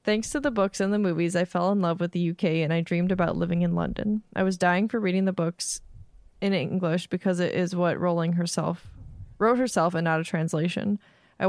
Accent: American